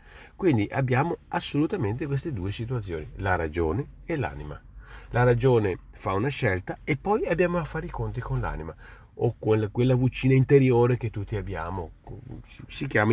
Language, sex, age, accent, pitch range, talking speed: Italian, male, 40-59, native, 90-130 Hz, 155 wpm